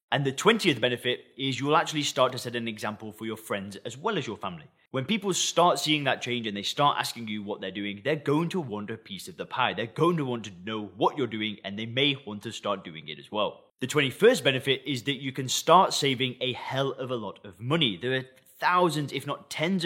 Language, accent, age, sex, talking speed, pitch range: English, British, 20-39, male, 255 wpm, 115-145 Hz